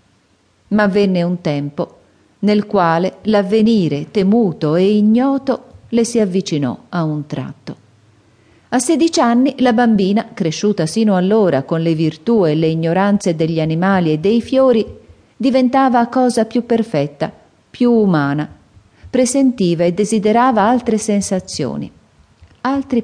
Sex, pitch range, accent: female, 150-210 Hz, native